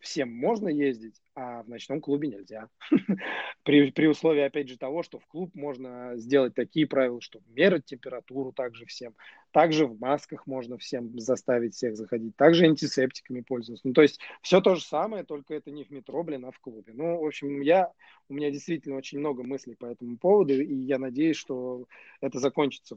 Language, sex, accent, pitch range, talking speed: Russian, male, native, 130-150 Hz, 180 wpm